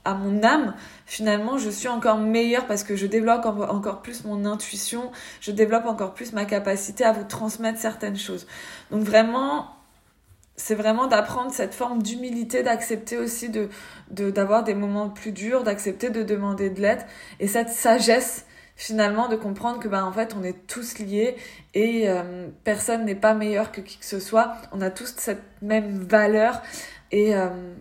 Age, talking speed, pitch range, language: 20-39, 180 wpm, 200-230 Hz, French